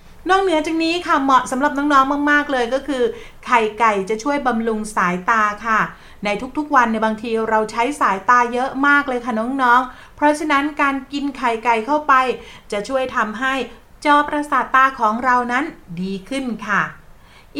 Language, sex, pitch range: Thai, female, 220-280 Hz